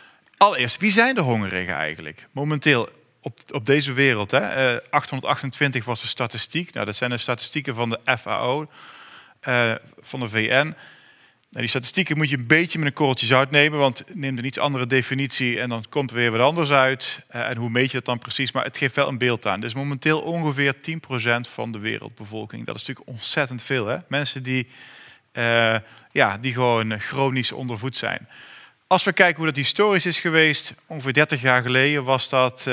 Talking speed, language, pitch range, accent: 185 wpm, Dutch, 120-140 Hz, Dutch